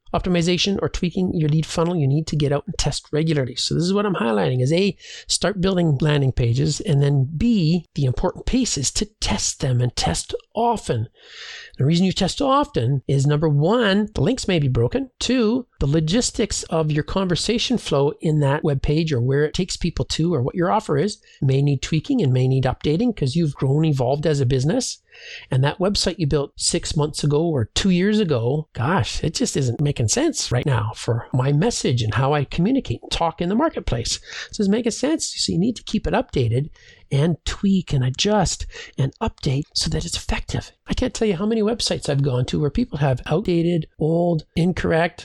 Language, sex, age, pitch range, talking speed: English, male, 40-59, 140-195 Hz, 205 wpm